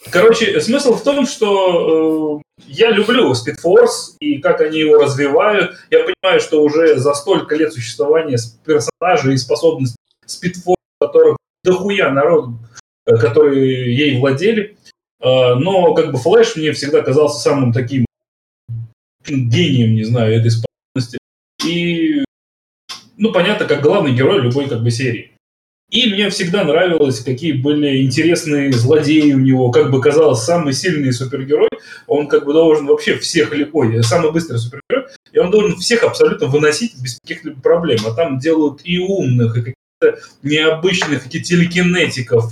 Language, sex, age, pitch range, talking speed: Russian, male, 30-49, 130-195 Hz, 145 wpm